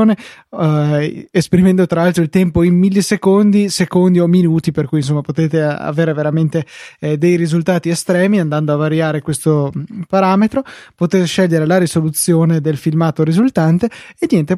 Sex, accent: male, native